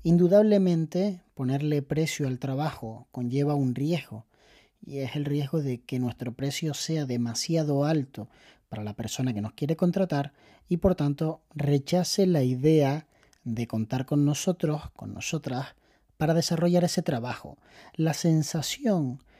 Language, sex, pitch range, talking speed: Spanish, male, 130-170 Hz, 135 wpm